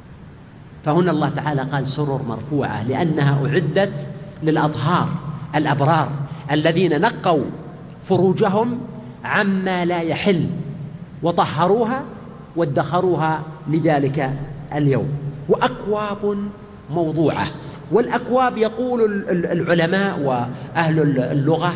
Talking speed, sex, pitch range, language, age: 75 wpm, male, 150-195 Hz, Arabic, 50-69